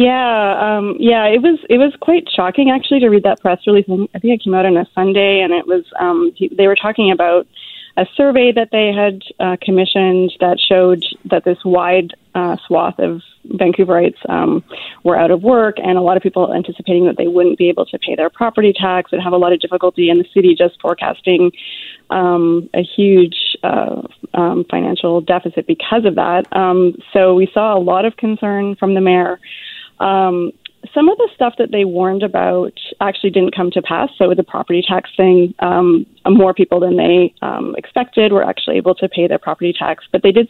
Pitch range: 180-215 Hz